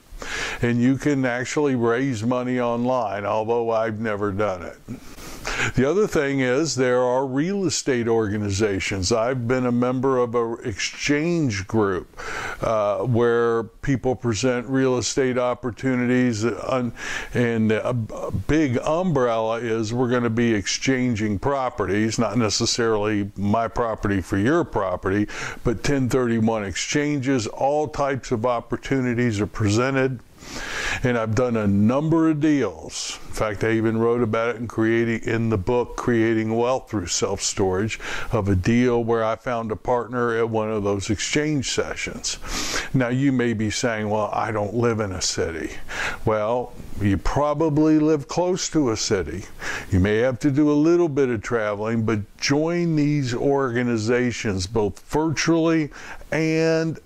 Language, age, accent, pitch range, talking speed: English, 60-79, American, 110-135 Hz, 145 wpm